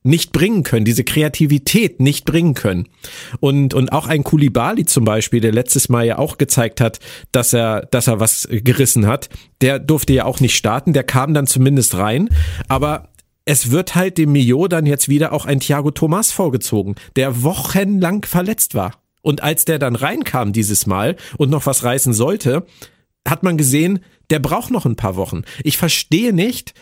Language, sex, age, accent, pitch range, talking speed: German, male, 50-69, German, 125-160 Hz, 185 wpm